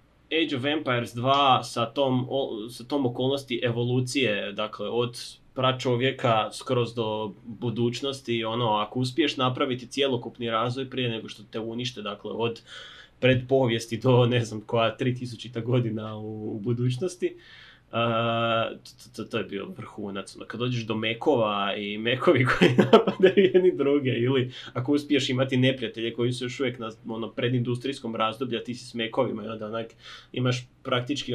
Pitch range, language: 110-130 Hz, Croatian